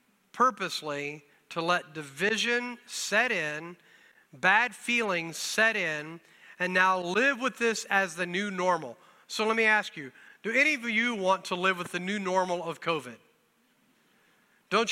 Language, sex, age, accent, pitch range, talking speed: English, male, 40-59, American, 175-220 Hz, 155 wpm